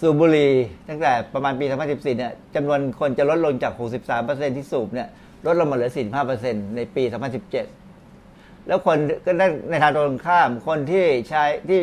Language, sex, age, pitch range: Thai, male, 60-79, 135-175 Hz